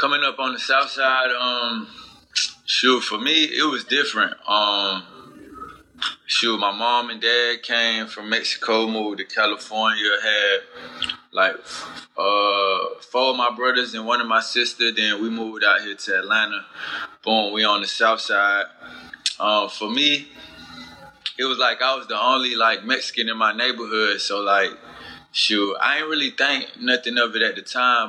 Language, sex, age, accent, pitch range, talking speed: English, male, 20-39, American, 105-120 Hz, 165 wpm